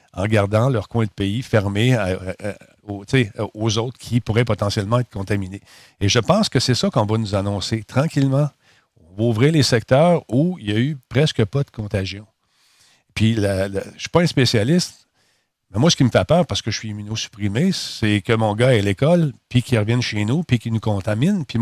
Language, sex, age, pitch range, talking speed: French, male, 50-69, 105-135 Hz, 210 wpm